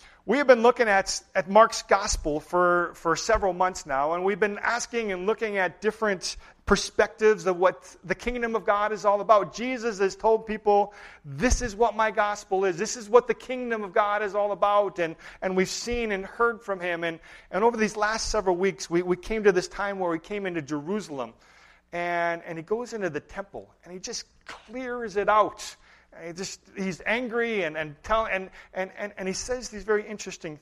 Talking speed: 210 wpm